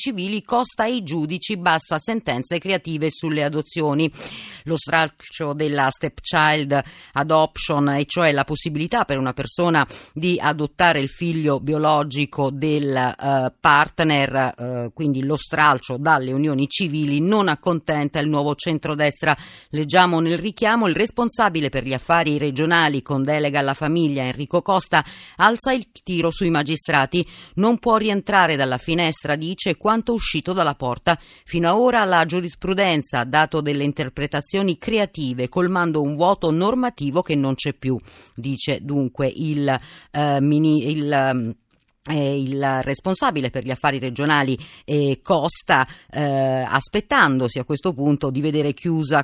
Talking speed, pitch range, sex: 140 wpm, 140-175 Hz, female